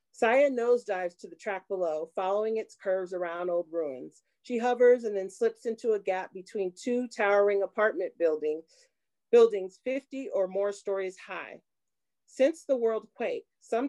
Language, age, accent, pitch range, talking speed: English, 40-59, American, 190-280 Hz, 155 wpm